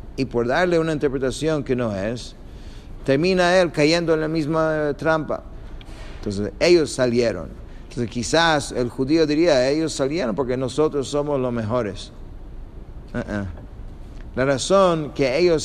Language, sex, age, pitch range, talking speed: English, male, 50-69, 110-145 Hz, 135 wpm